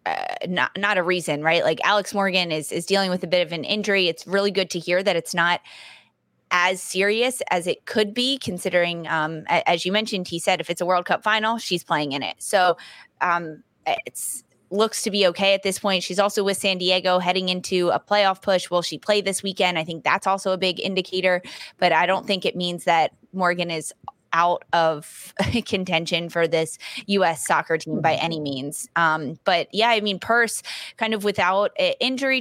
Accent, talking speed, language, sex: American, 205 wpm, English, female